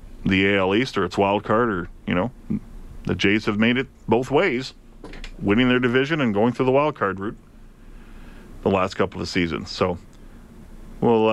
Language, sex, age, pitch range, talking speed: English, male, 40-59, 110-140 Hz, 180 wpm